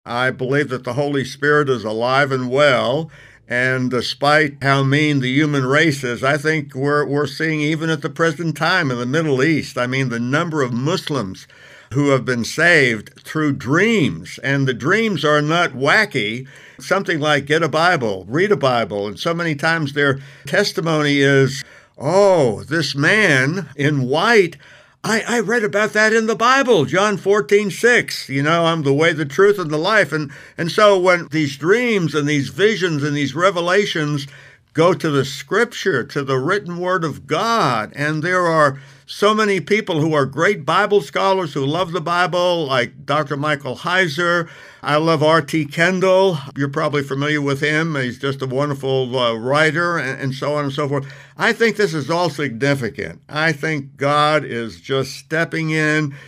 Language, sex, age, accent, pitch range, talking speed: English, male, 60-79, American, 135-175 Hz, 180 wpm